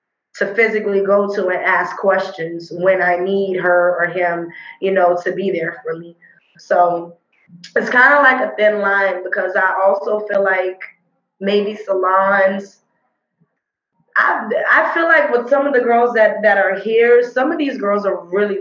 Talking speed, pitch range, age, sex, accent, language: 175 wpm, 185-215 Hz, 20-39, female, American, English